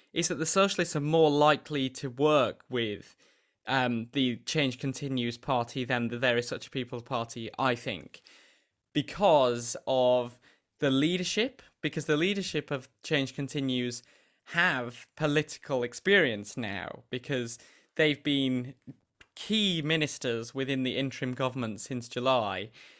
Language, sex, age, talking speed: English, male, 20-39, 130 wpm